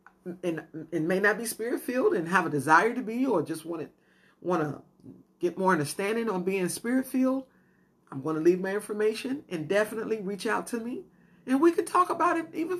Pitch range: 165-240 Hz